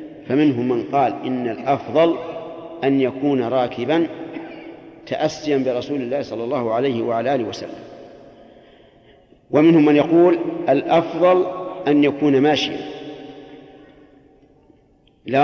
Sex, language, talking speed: male, Arabic, 95 wpm